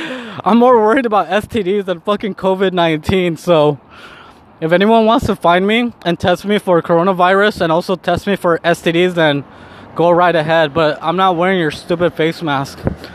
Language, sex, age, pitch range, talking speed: English, male, 20-39, 155-180 Hz, 175 wpm